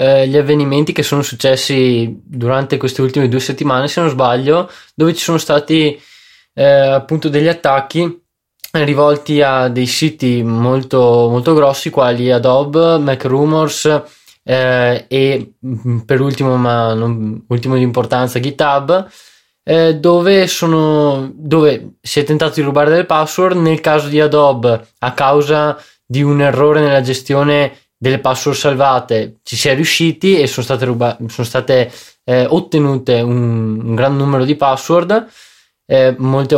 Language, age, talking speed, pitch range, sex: Italian, 20-39, 140 wpm, 125-150 Hz, male